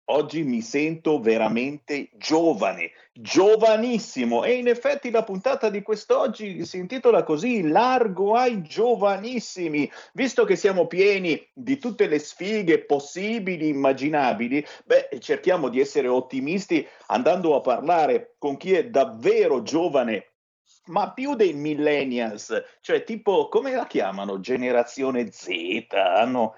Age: 50-69